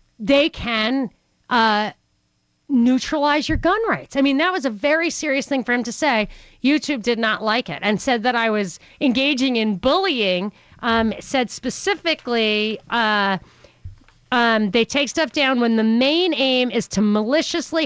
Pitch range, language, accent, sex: 205-270 Hz, English, American, female